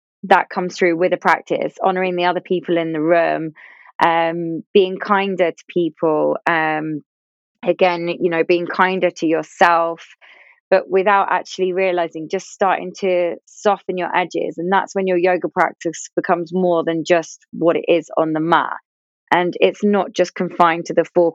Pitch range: 165-185 Hz